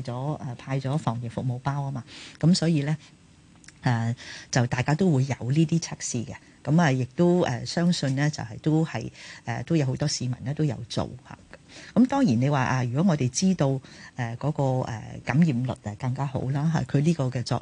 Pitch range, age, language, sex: 125-160 Hz, 40-59, Chinese, female